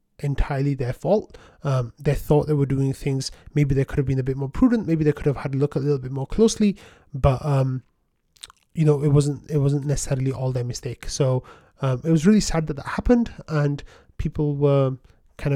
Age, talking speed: 30-49, 215 wpm